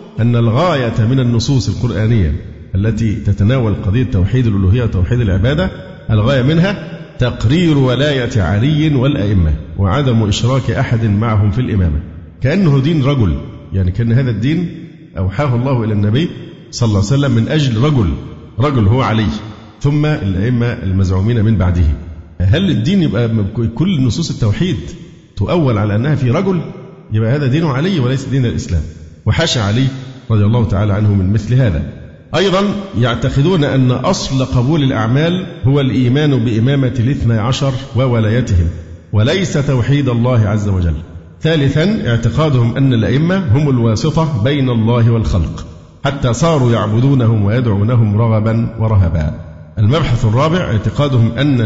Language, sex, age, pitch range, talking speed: Arabic, male, 50-69, 105-140 Hz, 130 wpm